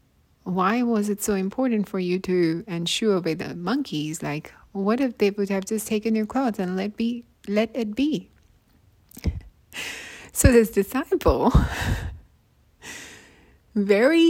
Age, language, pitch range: 30-49, English, 160-225 Hz